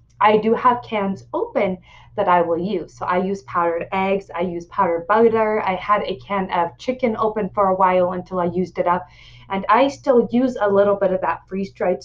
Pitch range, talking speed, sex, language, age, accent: 170-220 Hz, 215 wpm, female, English, 20-39, American